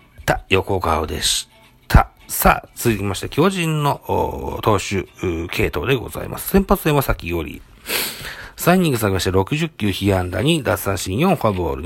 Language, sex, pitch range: Japanese, male, 95-130 Hz